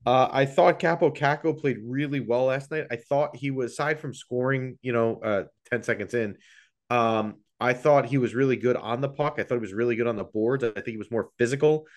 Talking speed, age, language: 240 wpm, 30-49, English